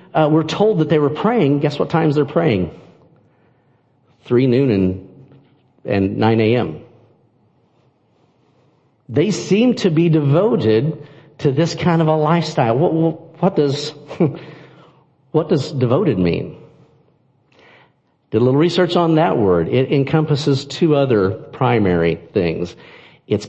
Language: English